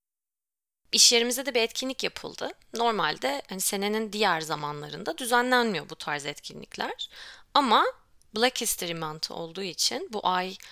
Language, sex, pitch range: Turkish, female, 165-225 Hz